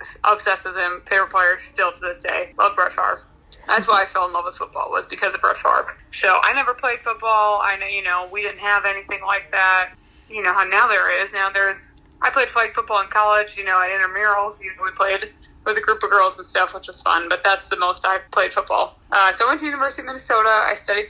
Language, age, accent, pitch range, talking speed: English, 20-39, American, 190-235 Hz, 255 wpm